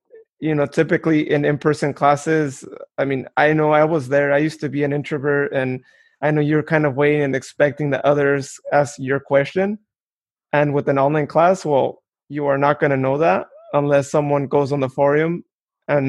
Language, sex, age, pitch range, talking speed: English, male, 20-39, 140-160 Hz, 200 wpm